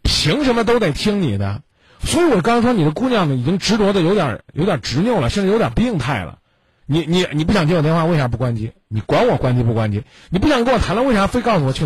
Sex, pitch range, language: male, 130-195 Hz, Chinese